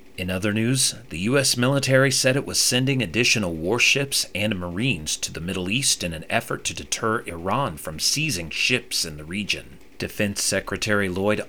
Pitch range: 90-130 Hz